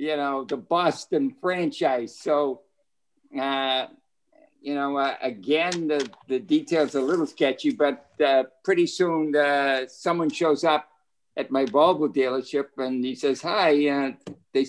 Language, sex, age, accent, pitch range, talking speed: English, male, 60-79, American, 135-185 Hz, 145 wpm